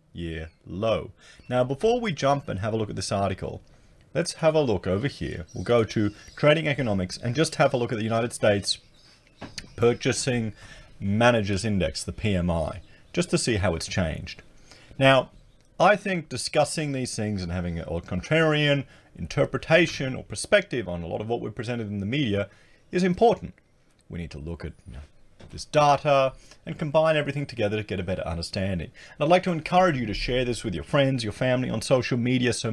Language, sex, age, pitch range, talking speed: English, male, 30-49, 95-140 Hz, 195 wpm